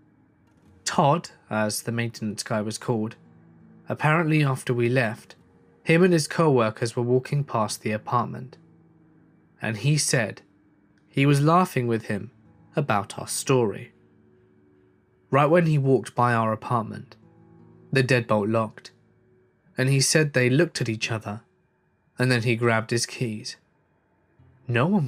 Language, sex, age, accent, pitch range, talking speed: English, male, 20-39, British, 110-145 Hz, 135 wpm